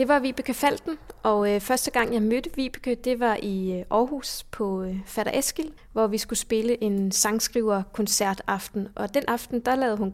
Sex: female